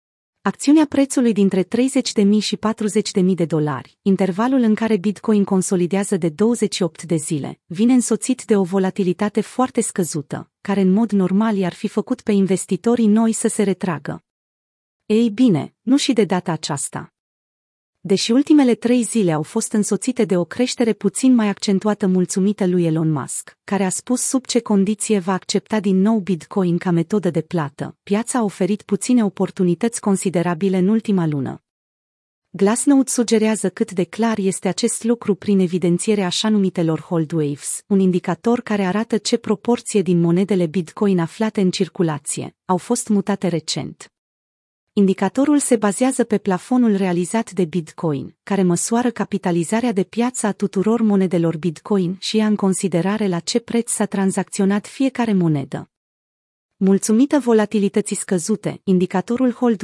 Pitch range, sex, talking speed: 180-225 Hz, female, 150 wpm